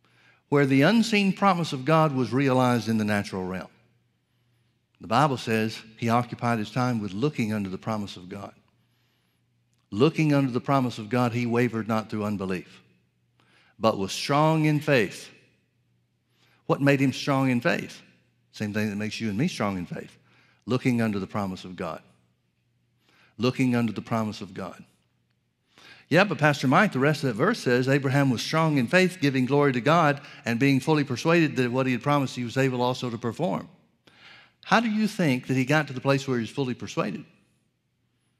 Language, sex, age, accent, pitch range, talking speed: English, male, 60-79, American, 115-145 Hz, 185 wpm